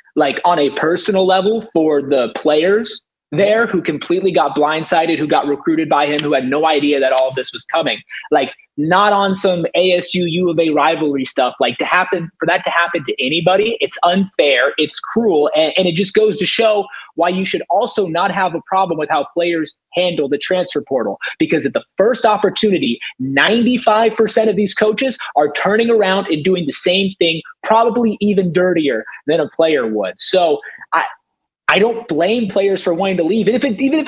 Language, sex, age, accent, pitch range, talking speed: English, male, 30-49, American, 155-215 Hz, 200 wpm